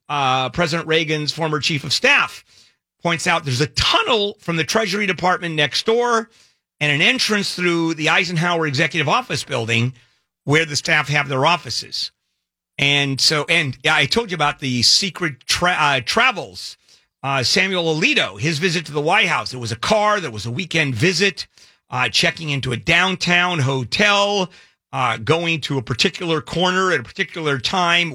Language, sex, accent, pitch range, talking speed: English, male, American, 120-175 Hz, 165 wpm